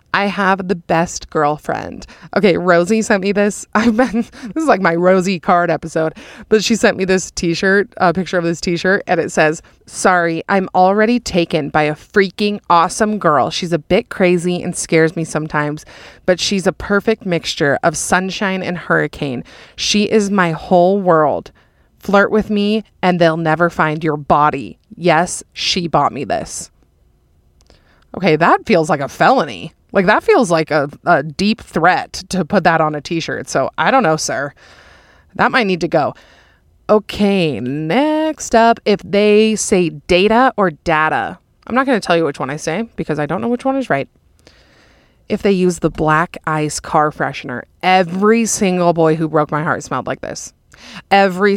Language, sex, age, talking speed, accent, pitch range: English, female, 30-49, 180 wpm, American, 155-205 Hz